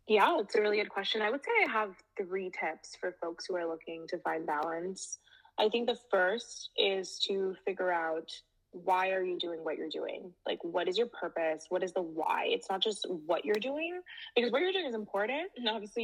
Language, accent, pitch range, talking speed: English, American, 165-215 Hz, 220 wpm